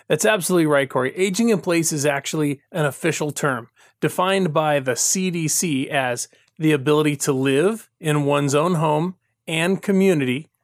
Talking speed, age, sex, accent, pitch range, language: 150 wpm, 30-49, male, American, 150-195 Hz, English